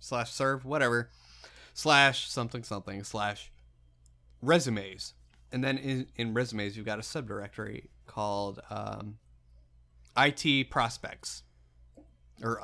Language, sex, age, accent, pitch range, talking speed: English, male, 30-49, American, 100-130 Hz, 105 wpm